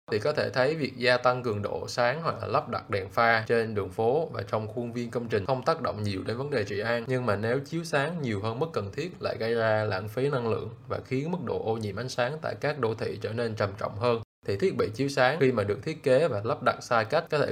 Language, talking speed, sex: Vietnamese, 290 wpm, male